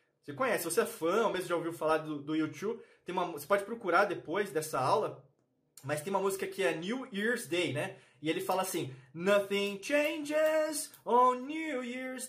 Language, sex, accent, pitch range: Portuguese, male, Brazilian, 160-245 Hz